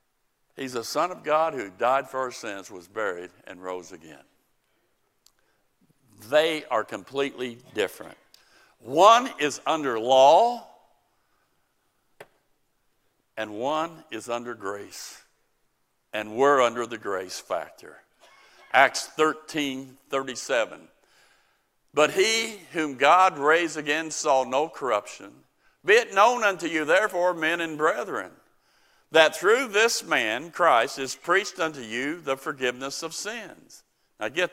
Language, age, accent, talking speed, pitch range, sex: English, 60-79, American, 120 wpm, 135-220 Hz, male